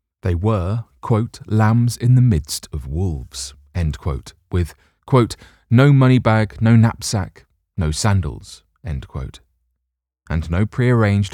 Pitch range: 75-115 Hz